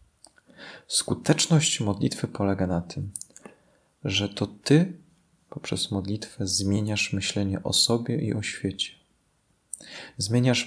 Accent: native